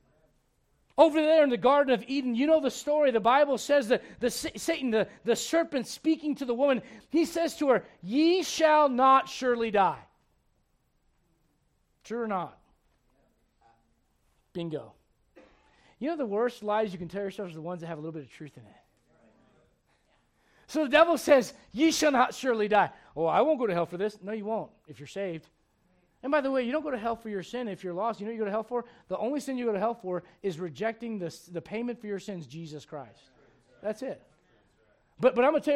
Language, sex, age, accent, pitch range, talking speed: English, male, 40-59, American, 200-290 Hz, 220 wpm